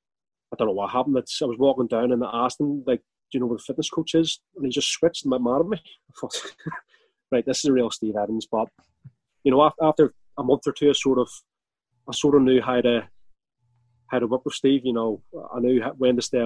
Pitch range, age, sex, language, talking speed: 120-150 Hz, 30-49, male, English, 260 wpm